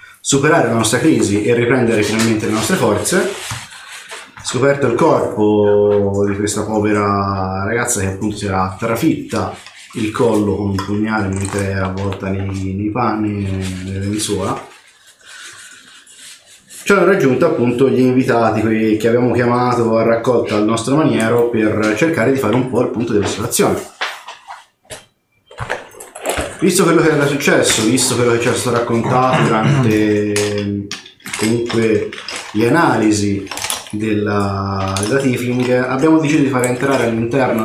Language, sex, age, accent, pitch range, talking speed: Italian, male, 30-49, native, 100-125 Hz, 130 wpm